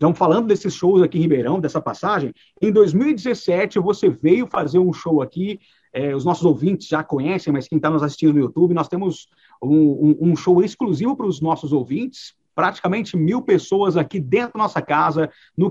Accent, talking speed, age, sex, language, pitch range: Brazilian, 190 wpm, 50-69, male, Portuguese, 160-215 Hz